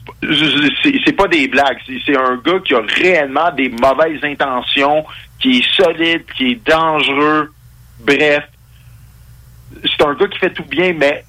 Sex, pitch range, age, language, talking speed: male, 120-160 Hz, 50-69, French, 155 wpm